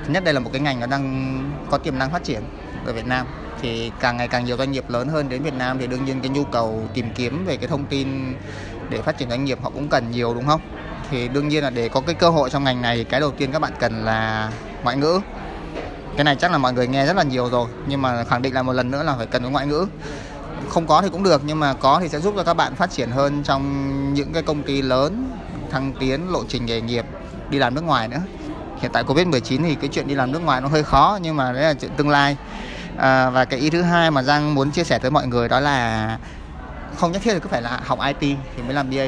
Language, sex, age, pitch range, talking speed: Vietnamese, male, 20-39, 125-150 Hz, 280 wpm